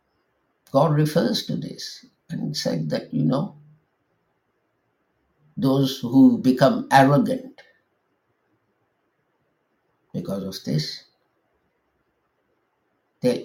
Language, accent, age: English, Indian, 60-79